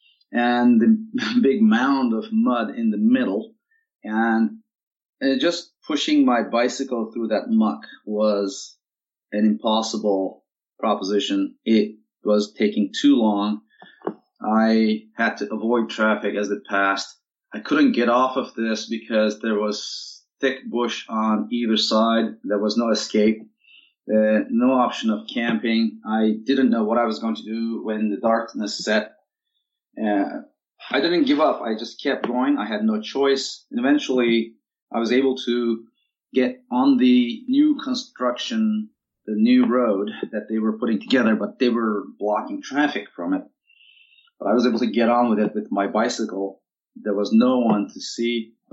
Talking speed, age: 160 wpm, 30-49